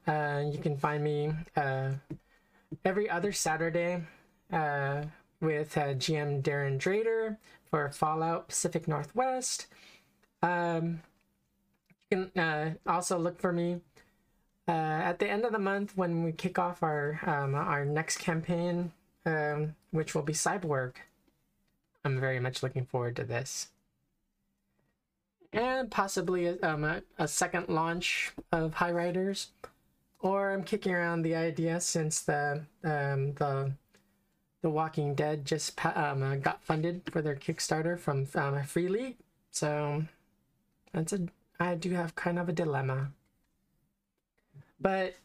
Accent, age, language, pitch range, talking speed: American, 20-39, English, 150-180 Hz, 135 wpm